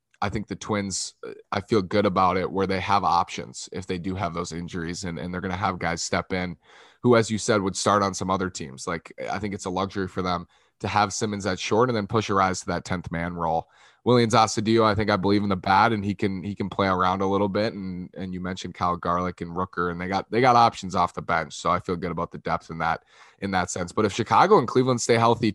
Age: 20-39